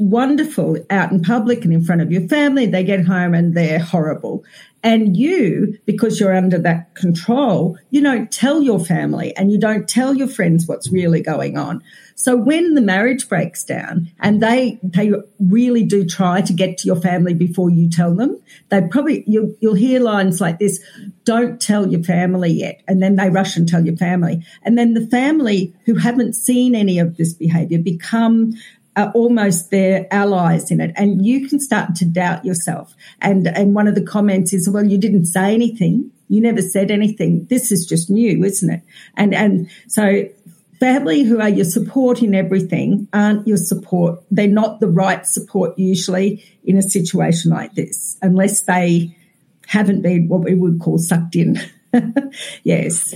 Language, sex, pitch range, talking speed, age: English, female, 180-225 Hz, 185 wpm, 50-69